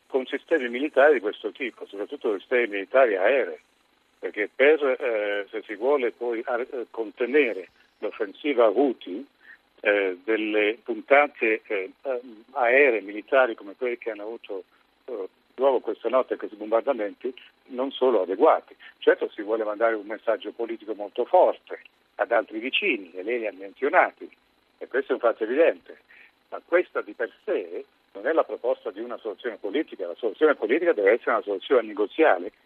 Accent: native